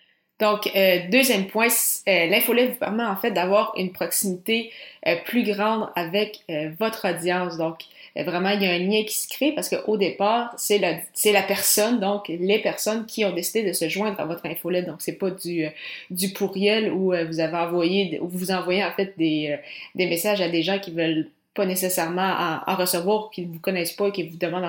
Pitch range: 170-200 Hz